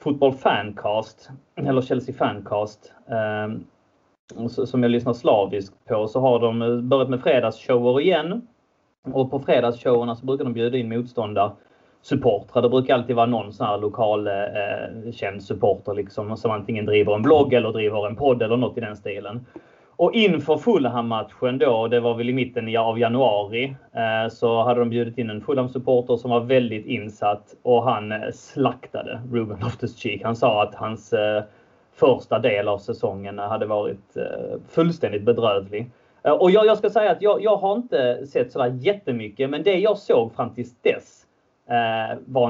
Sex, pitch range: male, 110-130 Hz